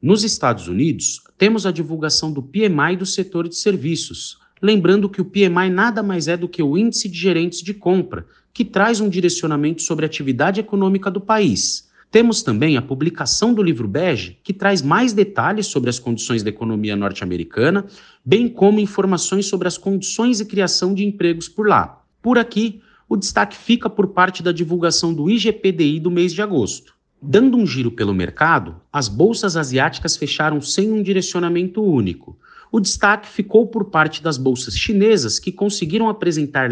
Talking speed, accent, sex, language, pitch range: 170 wpm, Brazilian, male, Portuguese, 160-210 Hz